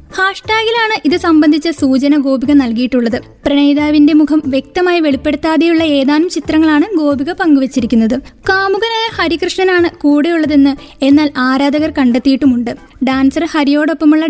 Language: Malayalam